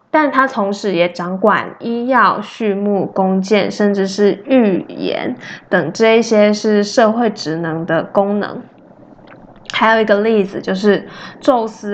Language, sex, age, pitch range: Chinese, female, 20-39, 195-235 Hz